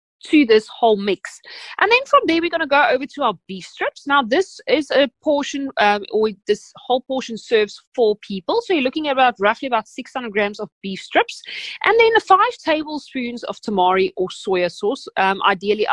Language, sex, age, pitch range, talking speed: English, female, 30-49, 200-295 Hz, 205 wpm